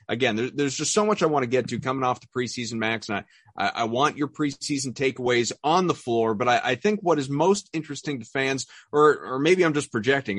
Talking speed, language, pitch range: 235 wpm, English, 120-160 Hz